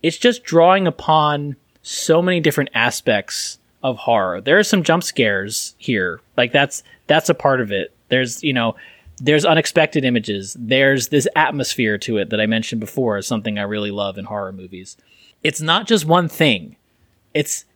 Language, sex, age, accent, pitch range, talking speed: English, male, 30-49, American, 115-160 Hz, 175 wpm